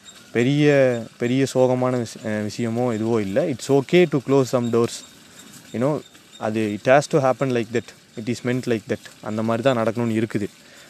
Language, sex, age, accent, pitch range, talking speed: Tamil, male, 20-39, native, 110-135 Hz, 170 wpm